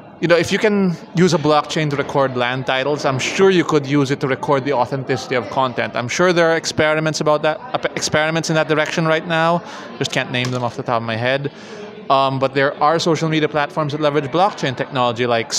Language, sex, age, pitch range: English, male, 20-39, 130-165 Hz